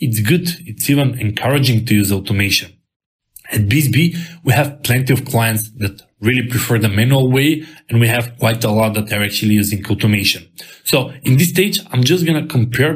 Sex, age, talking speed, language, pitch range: male, 20-39, 190 wpm, English, 110-150 Hz